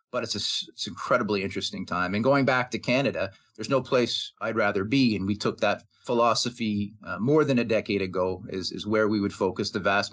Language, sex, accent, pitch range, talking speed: English, male, American, 100-125 Hz, 225 wpm